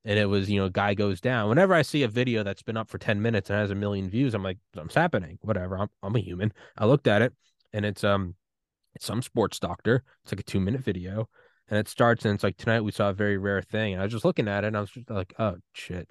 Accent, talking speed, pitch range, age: American, 290 wpm, 105-145 Hz, 20-39